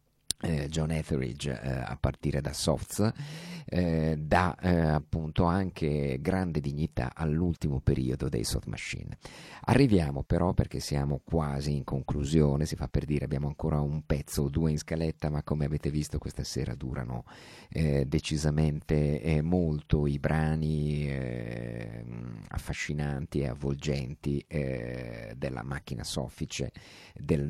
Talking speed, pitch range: 130 wpm, 70-80 Hz